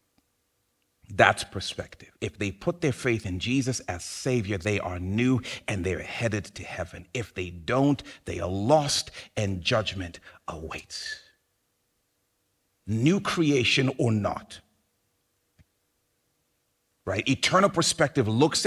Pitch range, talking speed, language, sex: 95-140 Hz, 115 wpm, English, male